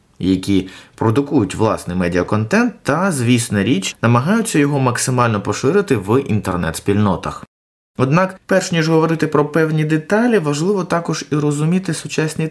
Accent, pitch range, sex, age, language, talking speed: native, 105-155 Hz, male, 20-39, Ukrainian, 120 wpm